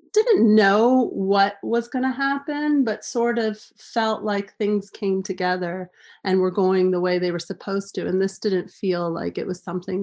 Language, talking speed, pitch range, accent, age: English, 185 wpm, 185-215 Hz, American, 30-49